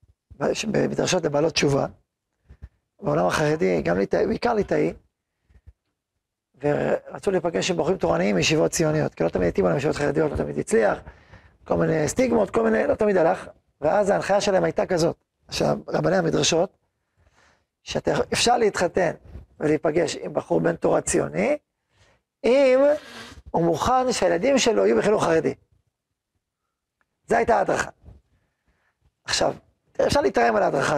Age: 40-59